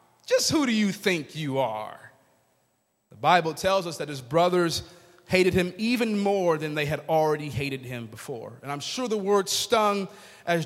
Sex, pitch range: male, 110-160 Hz